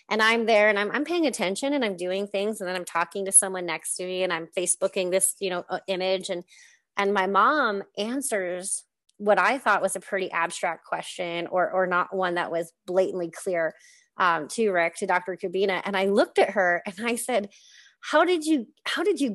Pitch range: 180-220 Hz